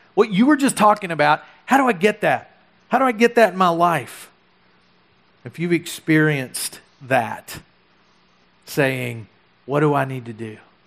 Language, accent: English, American